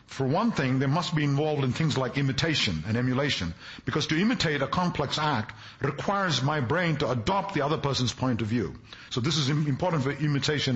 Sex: male